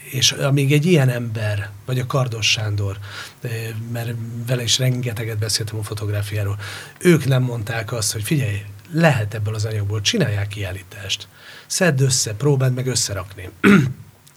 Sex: male